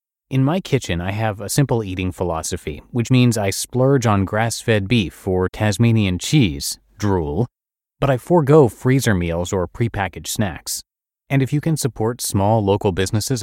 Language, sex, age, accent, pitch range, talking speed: English, male, 30-49, American, 95-130 Hz, 160 wpm